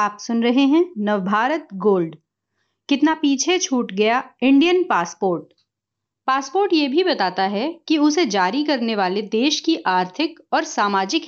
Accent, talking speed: native, 145 wpm